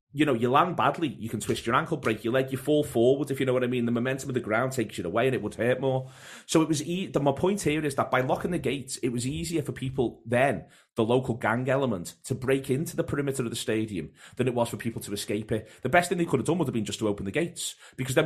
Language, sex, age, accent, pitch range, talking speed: English, male, 30-49, British, 110-135 Hz, 300 wpm